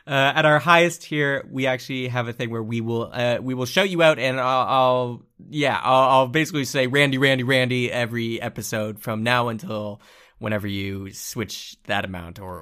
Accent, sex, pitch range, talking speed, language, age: American, male, 105-140 Hz, 195 wpm, English, 20-39